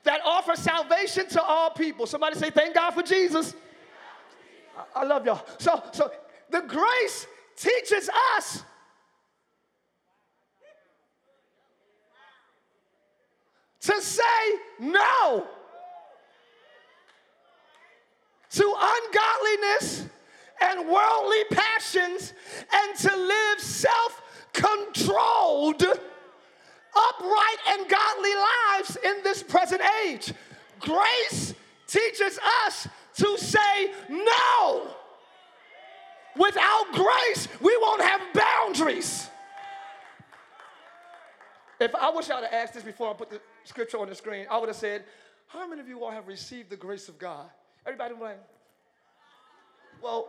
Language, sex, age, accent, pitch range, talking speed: English, male, 40-59, American, 295-425 Hz, 105 wpm